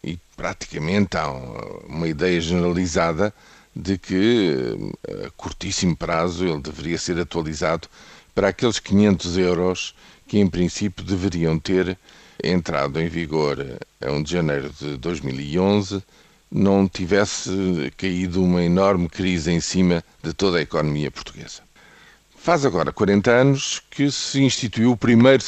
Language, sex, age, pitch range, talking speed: Portuguese, male, 50-69, 85-105 Hz, 130 wpm